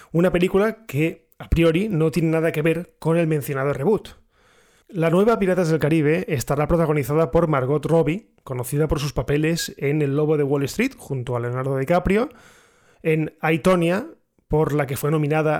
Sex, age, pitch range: male, 20-39, 150-175 Hz